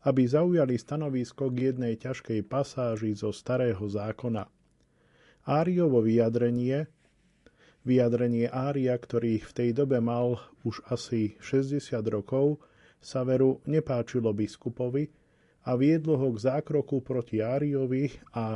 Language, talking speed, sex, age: Slovak, 115 wpm, male, 40-59